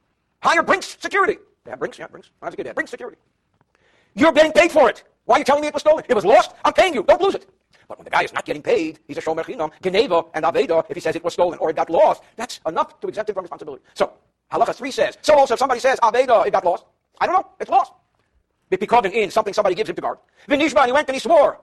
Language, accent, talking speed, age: English, American, 280 wpm, 50-69